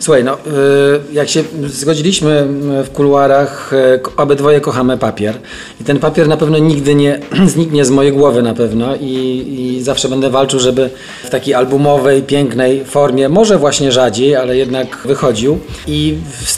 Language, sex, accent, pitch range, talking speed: Polish, male, native, 130-150 Hz, 150 wpm